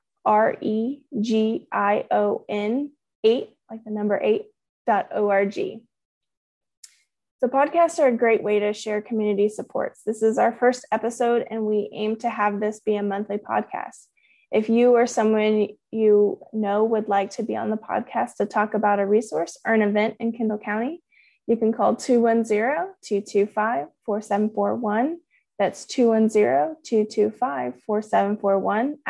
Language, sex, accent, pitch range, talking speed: English, female, American, 210-240 Hz, 130 wpm